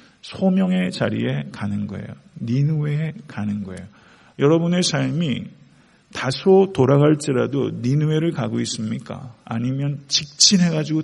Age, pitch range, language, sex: 50-69, 120-165 Hz, Korean, male